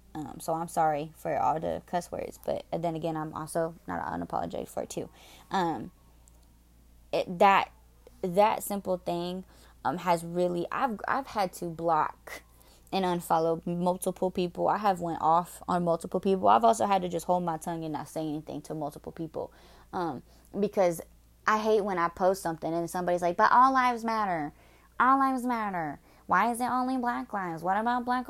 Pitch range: 165-205 Hz